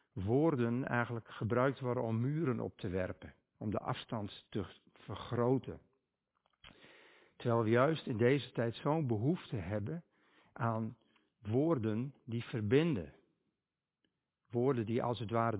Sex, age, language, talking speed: male, 50-69, Dutch, 125 wpm